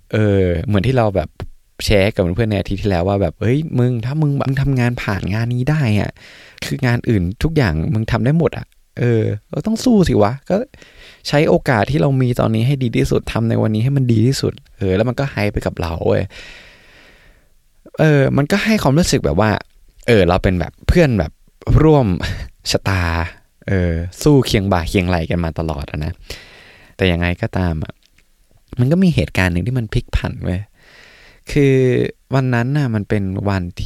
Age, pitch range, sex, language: 20-39, 85-125 Hz, male, Thai